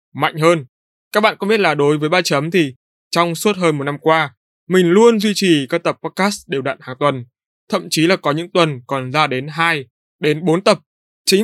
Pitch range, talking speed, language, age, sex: 145-185 Hz, 225 wpm, Vietnamese, 20-39, male